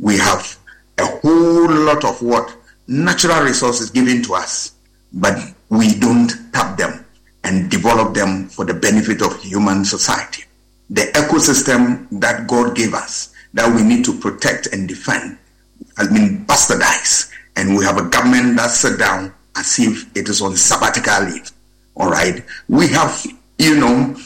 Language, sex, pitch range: English, male, 110-160 Hz